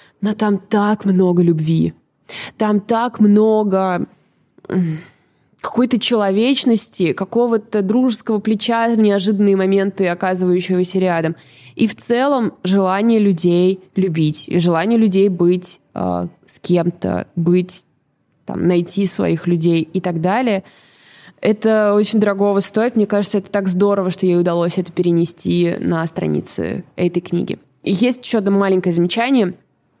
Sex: female